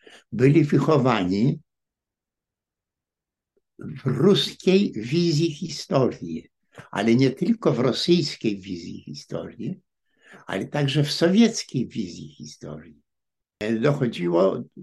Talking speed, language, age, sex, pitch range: 80 wpm, Polish, 60-79, male, 110-155 Hz